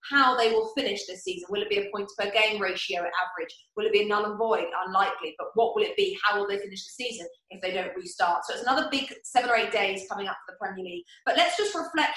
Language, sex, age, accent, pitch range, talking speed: English, female, 20-39, British, 205-295 Hz, 275 wpm